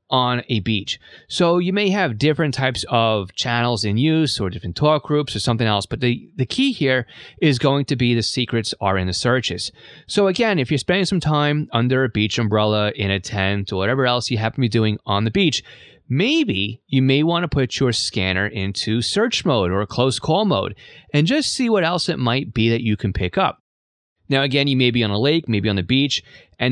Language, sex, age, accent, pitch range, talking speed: English, male, 30-49, American, 105-135 Hz, 225 wpm